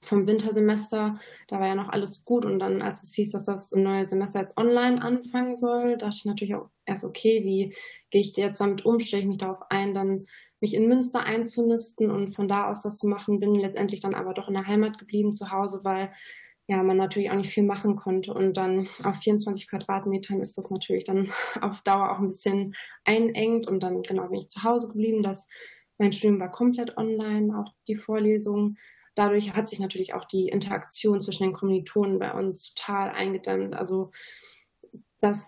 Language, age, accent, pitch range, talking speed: German, 20-39, German, 195-215 Hz, 200 wpm